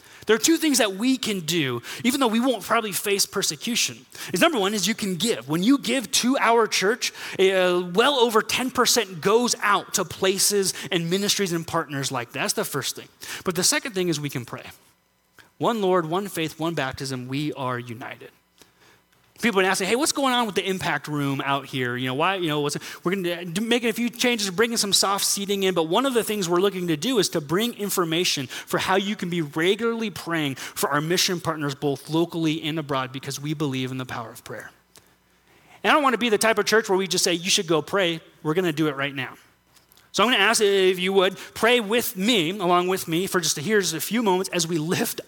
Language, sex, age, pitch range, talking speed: English, male, 30-49, 145-200 Hz, 230 wpm